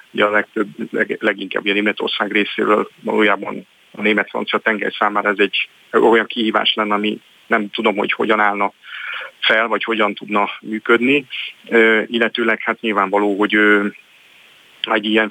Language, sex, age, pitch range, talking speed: Hungarian, male, 40-59, 105-115 Hz, 140 wpm